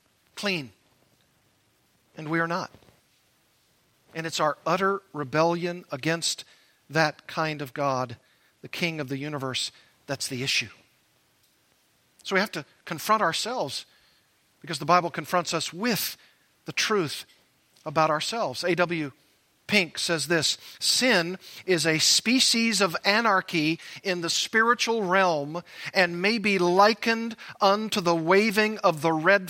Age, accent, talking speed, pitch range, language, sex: 50-69, American, 130 wpm, 160-240 Hz, English, male